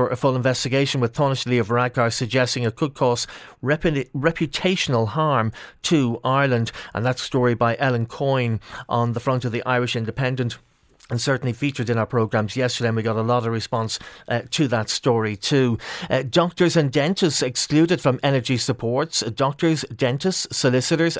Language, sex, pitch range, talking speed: English, male, 120-140 Hz, 170 wpm